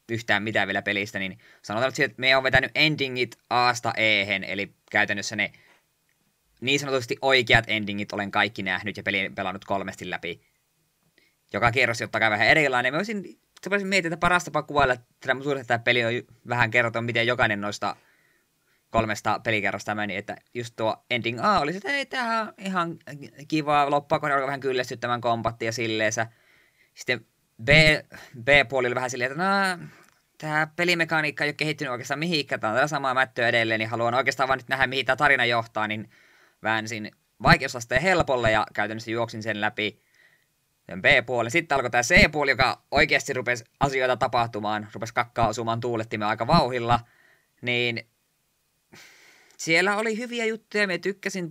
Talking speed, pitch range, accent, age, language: 155 wpm, 110-150 Hz, native, 20-39, Finnish